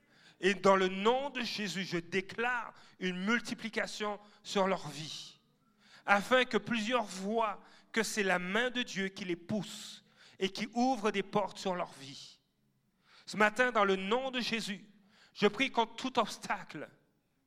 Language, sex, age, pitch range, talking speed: French, male, 40-59, 195-245 Hz, 160 wpm